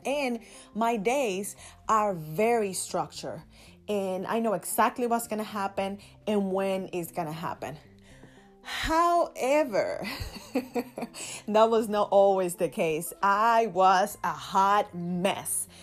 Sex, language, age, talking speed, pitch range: female, English, 20-39, 120 wpm, 185-240 Hz